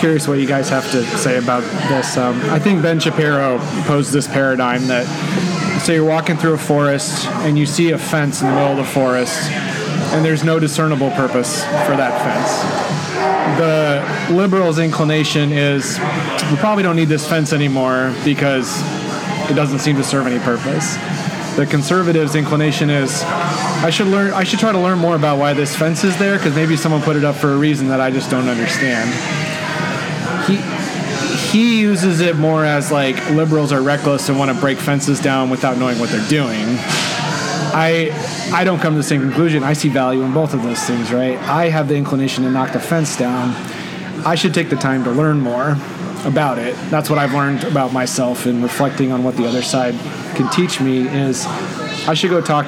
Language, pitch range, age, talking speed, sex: English, 135-165 Hz, 30-49, 200 wpm, male